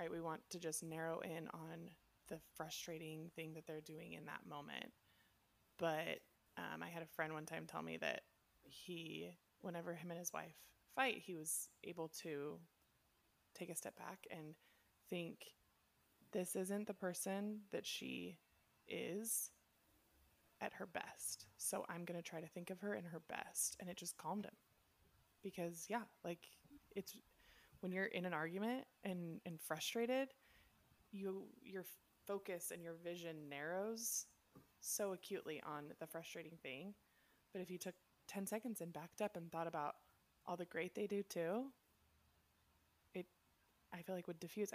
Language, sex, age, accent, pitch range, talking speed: English, female, 20-39, American, 155-190 Hz, 160 wpm